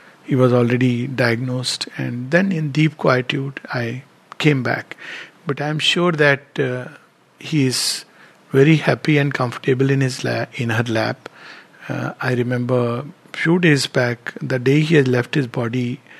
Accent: Indian